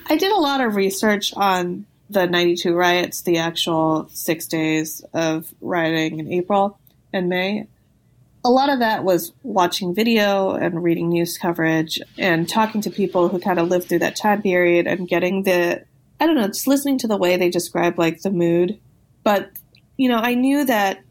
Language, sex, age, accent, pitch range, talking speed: English, female, 20-39, American, 170-205 Hz, 185 wpm